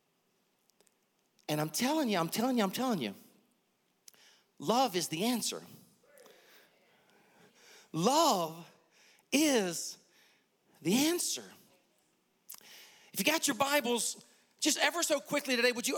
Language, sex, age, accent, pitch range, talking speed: English, male, 40-59, American, 210-280 Hz, 115 wpm